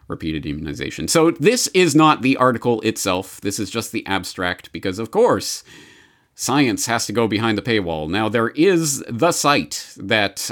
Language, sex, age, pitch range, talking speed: English, male, 30-49, 80-105 Hz, 170 wpm